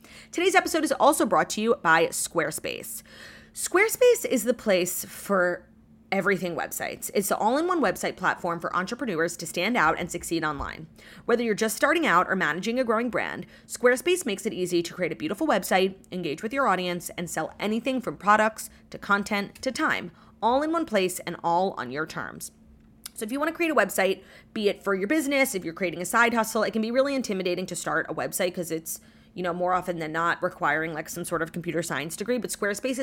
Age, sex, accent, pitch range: 30-49, female, American, 175-235 Hz